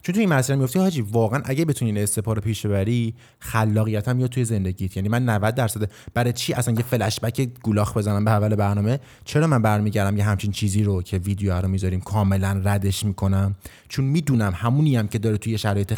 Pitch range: 105-125 Hz